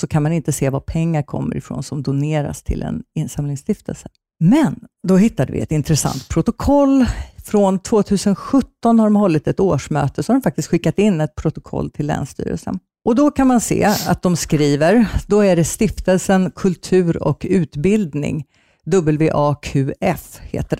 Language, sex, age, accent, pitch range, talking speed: Swedish, female, 50-69, native, 145-200 Hz, 160 wpm